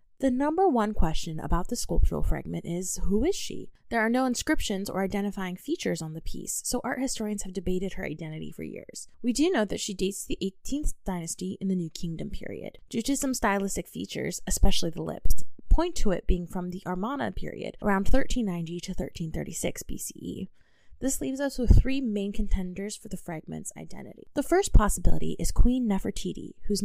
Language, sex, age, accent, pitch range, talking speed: English, female, 20-39, American, 180-245 Hz, 190 wpm